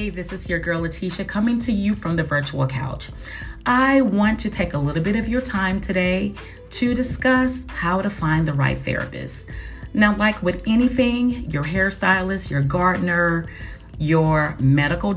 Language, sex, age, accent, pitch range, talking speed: English, female, 40-59, American, 140-195 Hz, 165 wpm